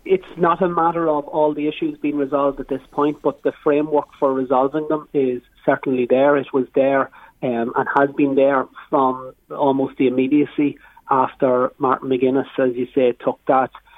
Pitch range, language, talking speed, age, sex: 130-145 Hz, English, 180 wpm, 30-49, male